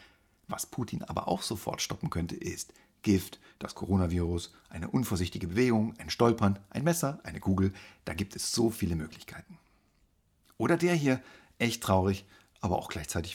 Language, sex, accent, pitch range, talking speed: German, male, German, 90-115 Hz, 155 wpm